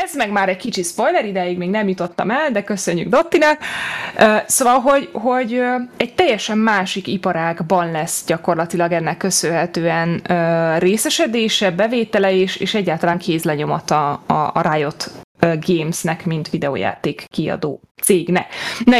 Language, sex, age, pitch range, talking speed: Hungarian, female, 20-39, 175-215 Hz, 125 wpm